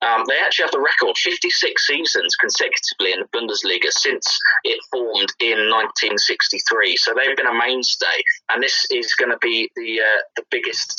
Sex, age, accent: male, 20-39, British